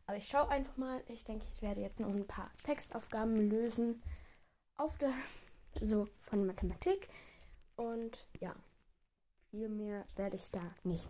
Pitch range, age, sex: 185-265 Hz, 10-29, female